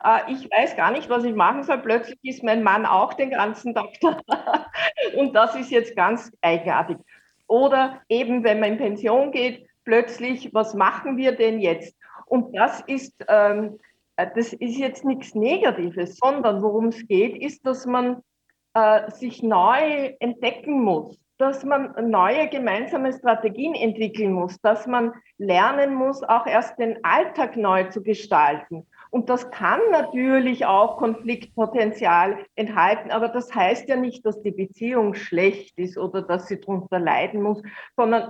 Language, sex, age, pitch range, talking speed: German, female, 50-69, 215-265 Hz, 150 wpm